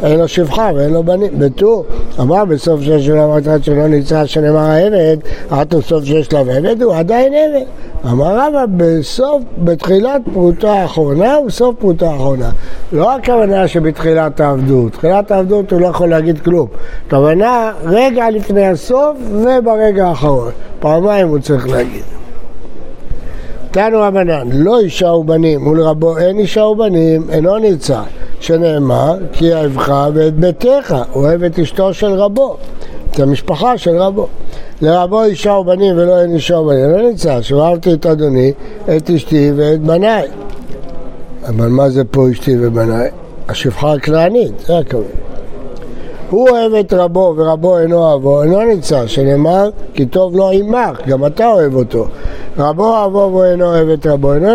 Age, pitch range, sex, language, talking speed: 60-79, 150-200 Hz, male, Hebrew, 145 wpm